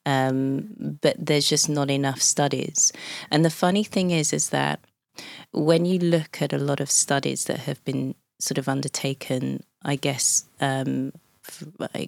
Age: 20-39